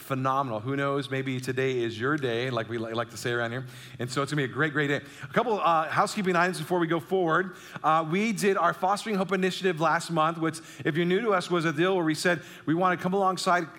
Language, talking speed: English, 260 wpm